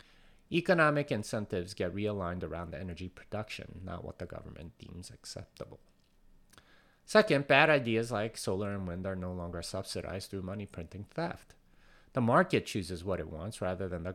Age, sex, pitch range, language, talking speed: 30-49, male, 90-115 Hz, English, 160 wpm